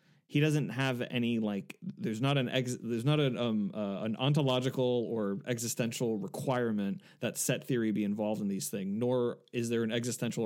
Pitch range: 110-145 Hz